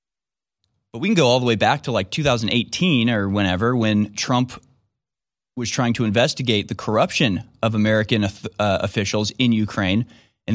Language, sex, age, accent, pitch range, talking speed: English, male, 30-49, American, 100-120 Hz, 160 wpm